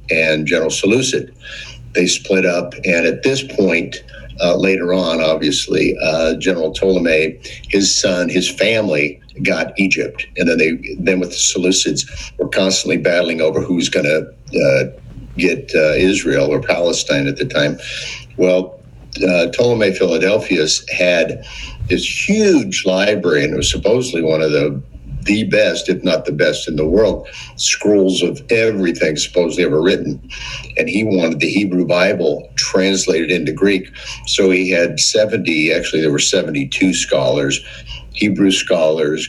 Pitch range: 85-100 Hz